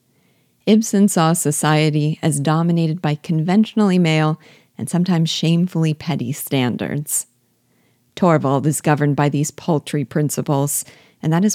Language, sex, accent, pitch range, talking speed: English, female, American, 145-170 Hz, 120 wpm